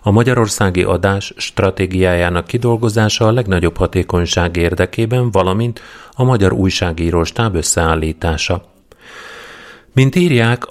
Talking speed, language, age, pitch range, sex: 95 wpm, Hungarian, 30-49, 85-110 Hz, male